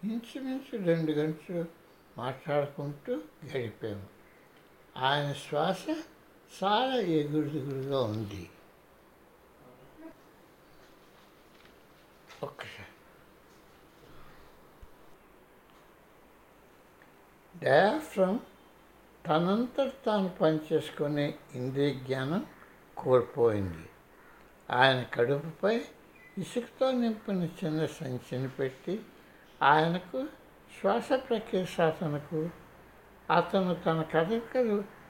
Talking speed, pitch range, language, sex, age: 60 wpm, 145-205 Hz, Telugu, male, 60-79